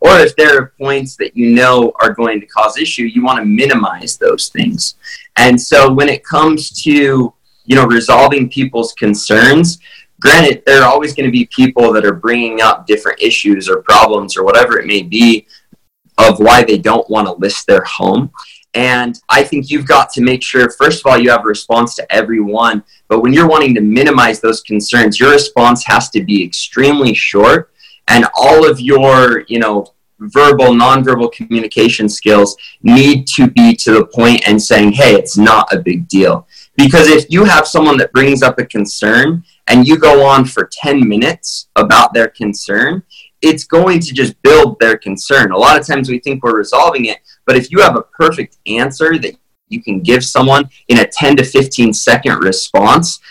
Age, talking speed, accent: 20-39, 190 wpm, American